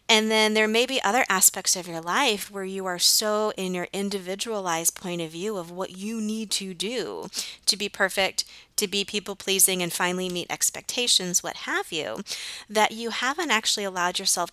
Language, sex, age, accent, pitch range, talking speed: English, female, 30-49, American, 175-215 Hz, 190 wpm